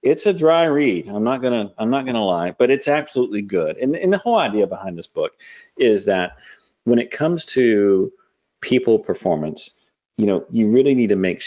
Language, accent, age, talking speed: English, American, 40-59, 200 wpm